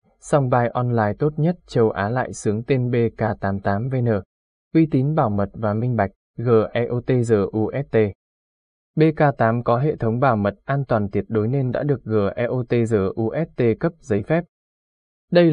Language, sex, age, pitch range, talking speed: Vietnamese, male, 20-39, 110-140 Hz, 155 wpm